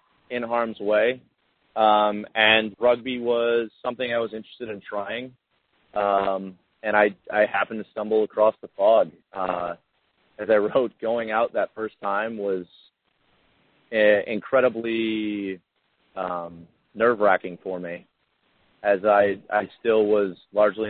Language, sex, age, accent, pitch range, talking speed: English, male, 30-49, American, 95-110 Hz, 130 wpm